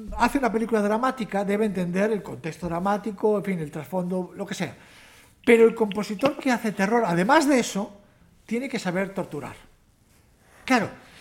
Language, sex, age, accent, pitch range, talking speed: Spanish, male, 60-79, Spanish, 175-225 Hz, 160 wpm